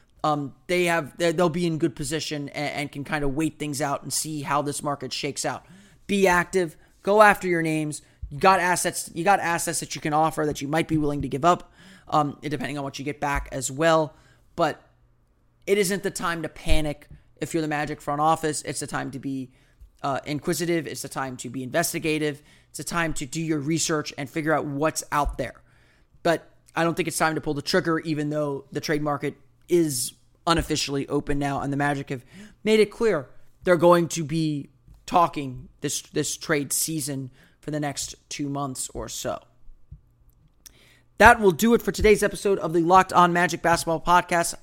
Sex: male